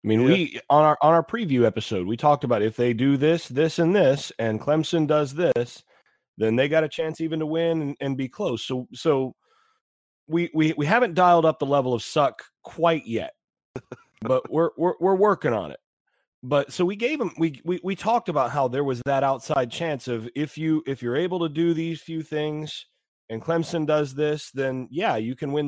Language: English